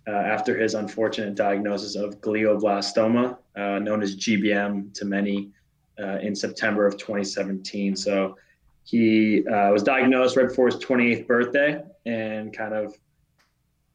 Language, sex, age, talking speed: English, male, 20-39, 140 wpm